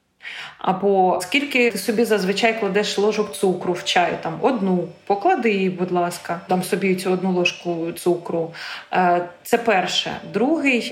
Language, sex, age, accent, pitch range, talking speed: Ukrainian, female, 20-39, native, 180-225 Hz, 135 wpm